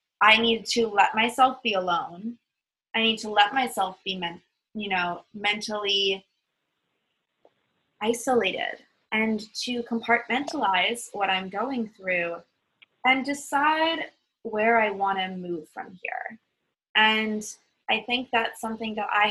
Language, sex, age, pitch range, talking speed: English, female, 20-39, 190-235 Hz, 125 wpm